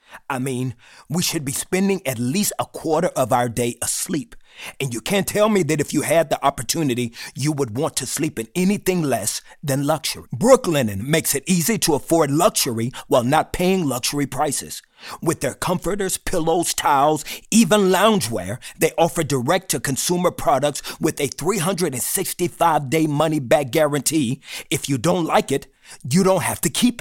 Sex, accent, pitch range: male, American, 140-190 Hz